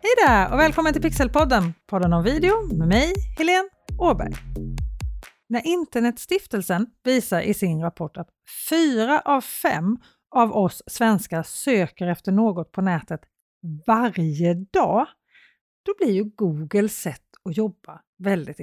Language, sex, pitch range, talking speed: Swedish, female, 175-245 Hz, 130 wpm